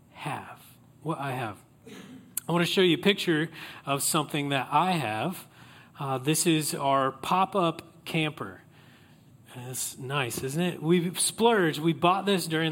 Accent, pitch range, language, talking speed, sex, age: American, 140-180 Hz, English, 155 wpm, male, 30-49